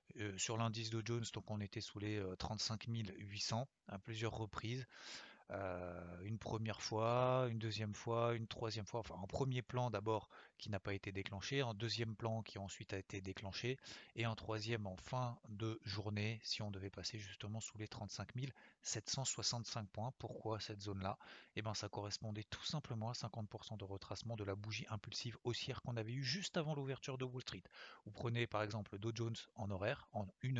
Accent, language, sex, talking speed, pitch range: French, French, male, 190 wpm, 100-115 Hz